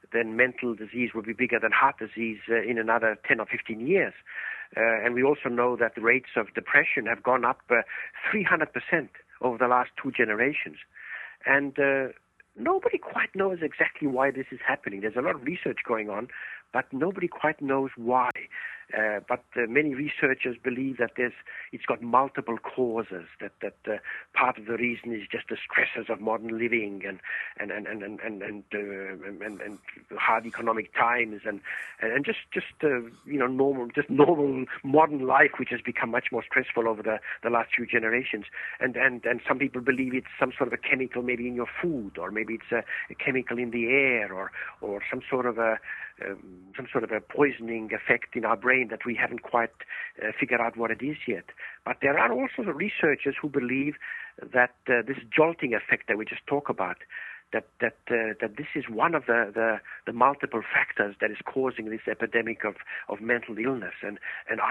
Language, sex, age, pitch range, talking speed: English, male, 60-79, 115-135 Hz, 200 wpm